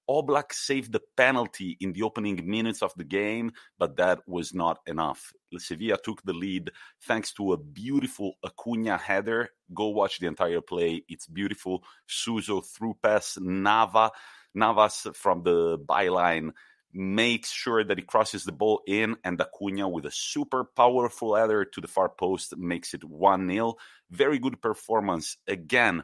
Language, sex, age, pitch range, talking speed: English, male, 30-49, 90-115 Hz, 155 wpm